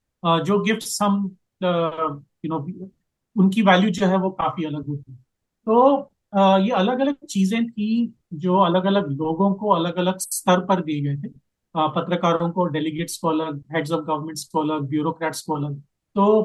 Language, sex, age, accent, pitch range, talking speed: Hindi, male, 40-59, native, 155-190 Hz, 160 wpm